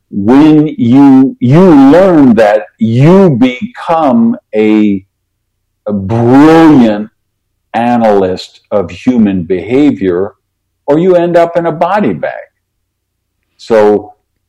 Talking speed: 95 wpm